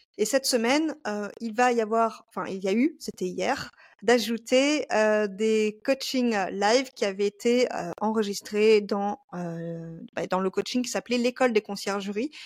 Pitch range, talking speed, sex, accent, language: 200-245 Hz, 170 wpm, female, French, French